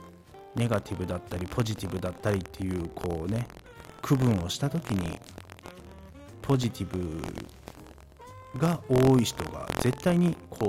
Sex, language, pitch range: male, Japanese, 95-130 Hz